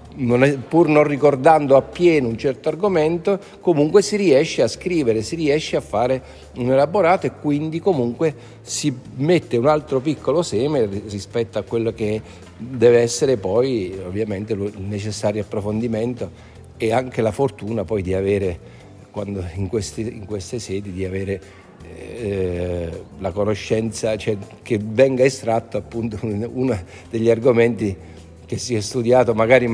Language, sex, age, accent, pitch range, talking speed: Italian, male, 50-69, native, 105-135 Hz, 145 wpm